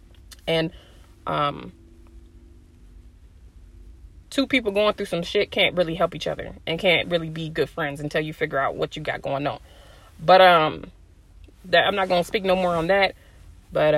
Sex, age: female, 20-39